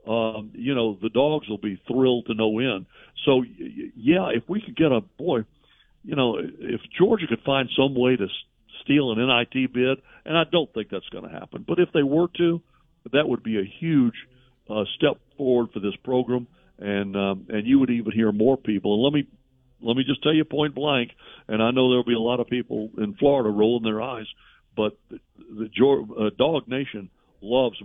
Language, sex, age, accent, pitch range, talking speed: English, male, 60-79, American, 105-130 Hz, 210 wpm